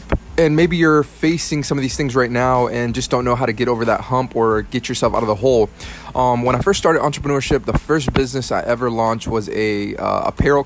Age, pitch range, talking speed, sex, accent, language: 20-39, 115-135 Hz, 235 wpm, male, American, English